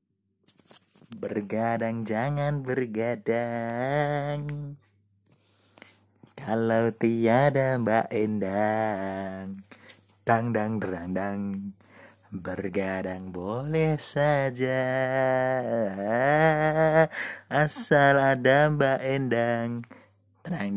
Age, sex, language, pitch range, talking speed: 30-49, male, Indonesian, 110-145 Hz, 55 wpm